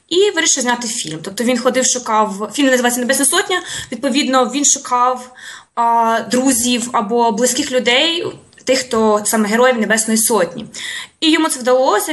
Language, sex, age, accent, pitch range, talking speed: Russian, female, 20-39, native, 225-275 Hz, 150 wpm